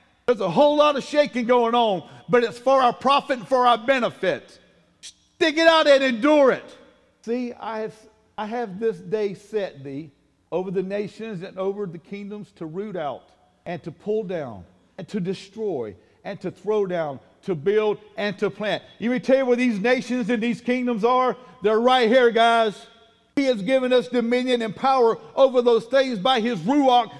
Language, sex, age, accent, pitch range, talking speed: English, male, 50-69, American, 175-245 Hz, 190 wpm